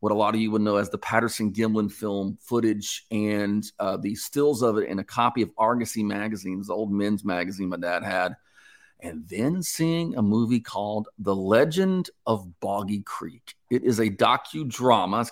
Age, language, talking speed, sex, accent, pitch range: 40-59, English, 190 wpm, male, American, 105-120 Hz